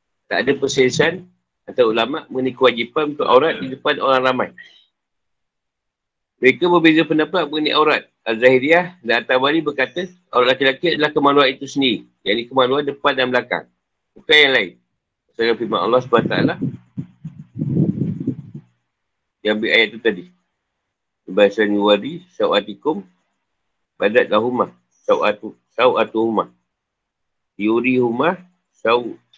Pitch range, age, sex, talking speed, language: 120-155 Hz, 50-69, male, 110 wpm, Malay